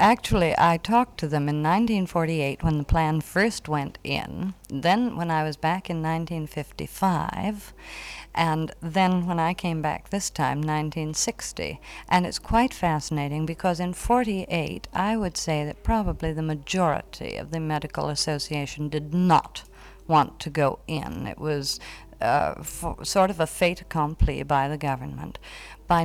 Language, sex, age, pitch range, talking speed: English, female, 50-69, 150-190 Hz, 150 wpm